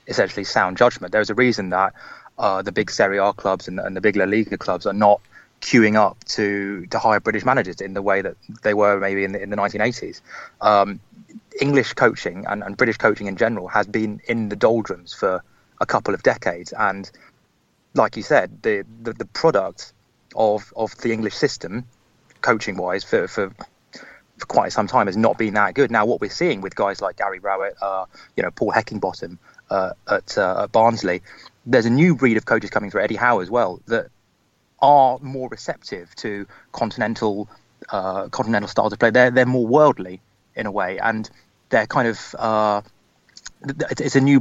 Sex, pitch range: male, 100-120 Hz